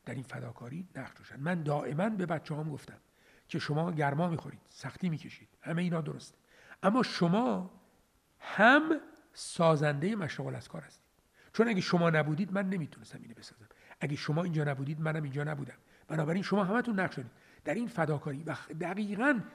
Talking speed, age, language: 160 wpm, 60-79, Persian